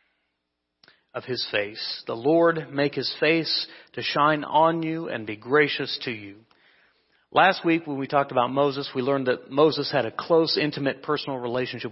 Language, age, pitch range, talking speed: English, 40-59, 125-155 Hz, 170 wpm